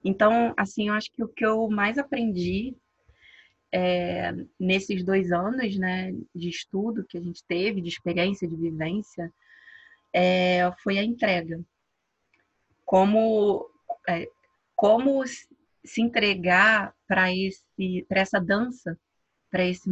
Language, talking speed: Portuguese, 120 wpm